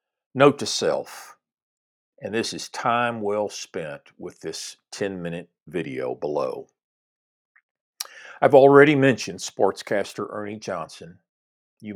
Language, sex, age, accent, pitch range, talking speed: English, male, 50-69, American, 95-125 Hz, 105 wpm